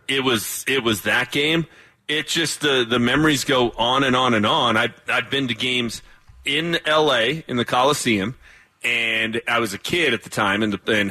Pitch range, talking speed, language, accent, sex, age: 115-145 Hz, 205 wpm, English, American, male, 30-49